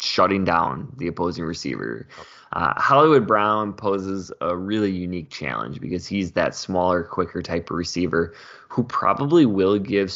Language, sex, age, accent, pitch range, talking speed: English, male, 20-39, American, 85-105 Hz, 150 wpm